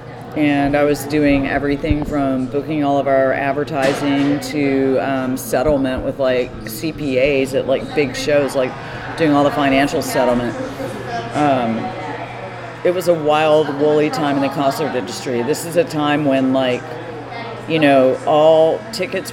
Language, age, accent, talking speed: English, 40-59, American, 150 wpm